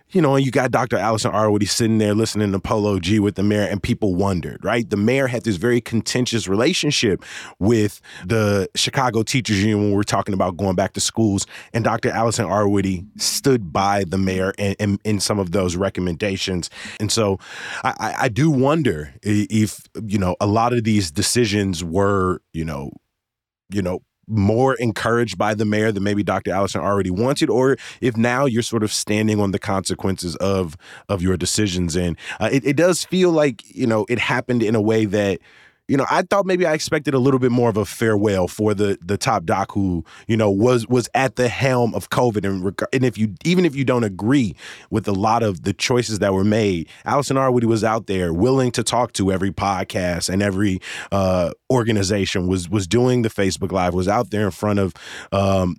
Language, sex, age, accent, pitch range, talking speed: English, male, 20-39, American, 95-120 Hz, 205 wpm